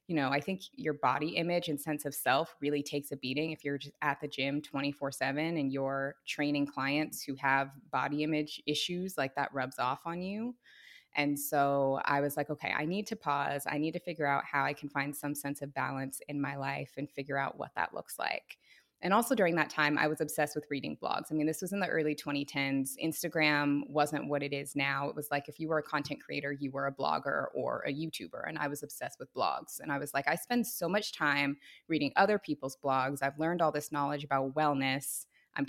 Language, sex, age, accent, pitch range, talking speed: English, female, 20-39, American, 140-155 Hz, 230 wpm